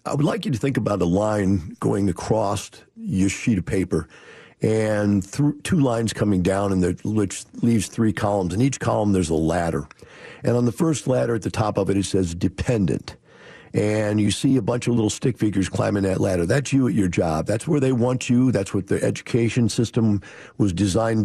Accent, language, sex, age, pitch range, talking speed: American, English, male, 50-69, 95-130 Hz, 210 wpm